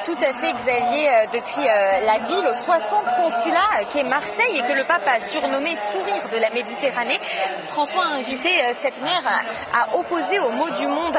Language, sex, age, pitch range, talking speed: French, female, 30-49, 230-320 Hz, 180 wpm